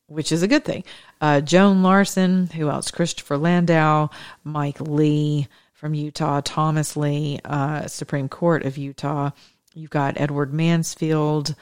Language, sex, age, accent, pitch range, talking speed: English, female, 40-59, American, 145-165 Hz, 140 wpm